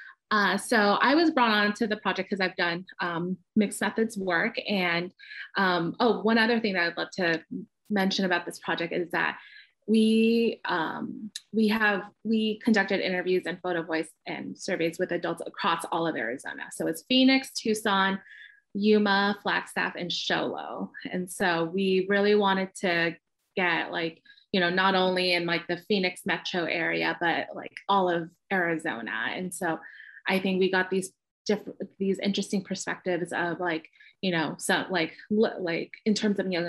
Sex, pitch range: female, 180-220 Hz